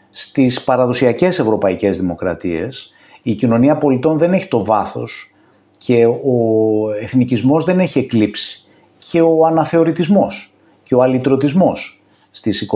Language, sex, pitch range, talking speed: Greek, male, 120-165 Hz, 115 wpm